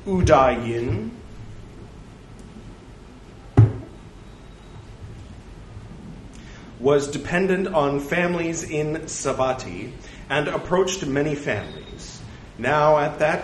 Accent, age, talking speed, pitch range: American, 40-59, 65 wpm, 110-150 Hz